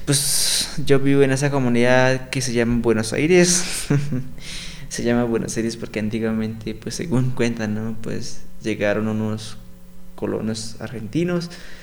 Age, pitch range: 20-39, 110-140 Hz